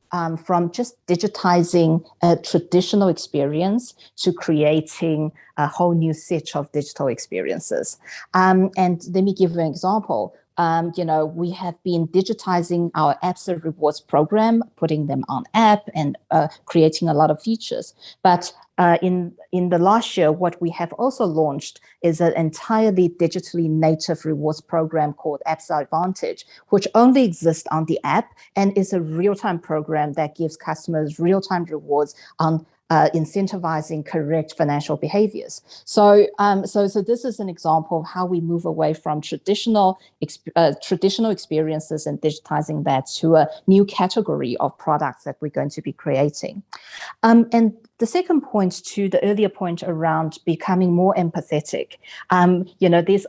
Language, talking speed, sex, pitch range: English, 160 wpm, female, 160-195 Hz